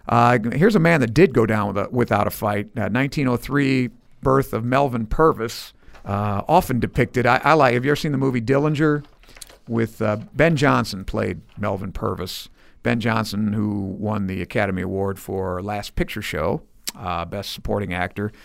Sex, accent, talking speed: male, American, 175 wpm